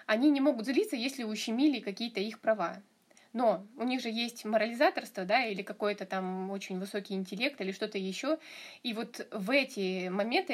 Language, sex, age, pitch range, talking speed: Russian, female, 20-39, 210-275 Hz, 170 wpm